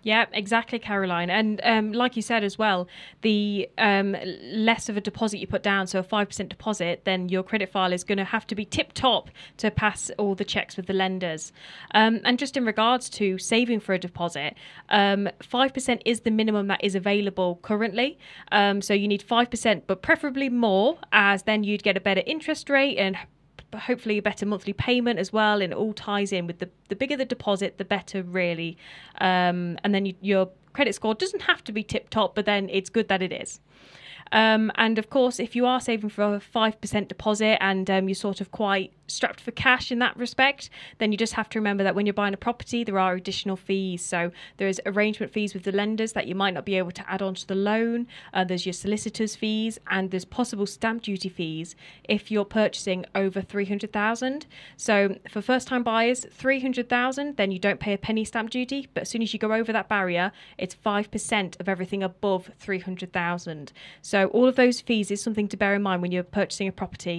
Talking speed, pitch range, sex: 215 wpm, 190-225 Hz, female